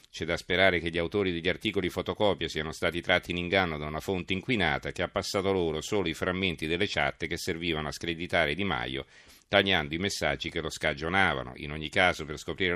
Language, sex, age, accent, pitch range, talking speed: Italian, male, 40-59, native, 80-95 Hz, 205 wpm